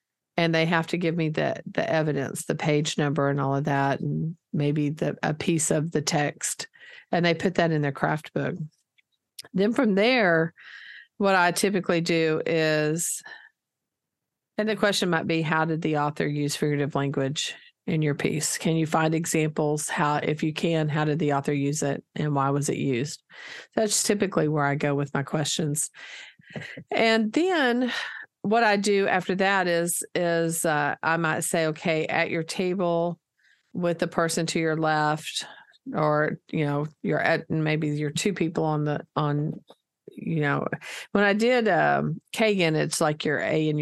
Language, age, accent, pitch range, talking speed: English, 50-69, American, 150-180 Hz, 175 wpm